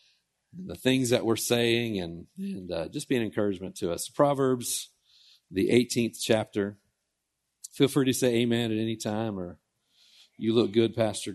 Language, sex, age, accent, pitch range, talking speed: English, male, 40-59, American, 115-150 Hz, 165 wpm